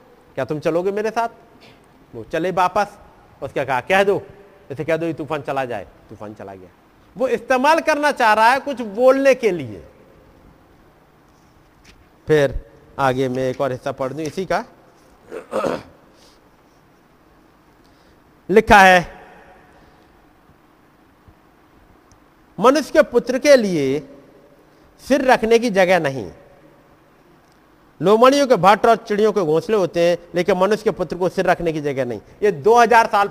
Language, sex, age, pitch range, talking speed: Hindi, male, 50-69, 155-240 Hz, 135 wpm